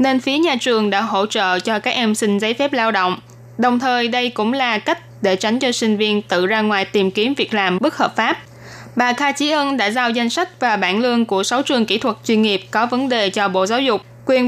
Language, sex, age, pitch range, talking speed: Vietnamese, female, 20-39, 205-255 Hz, 255 wpm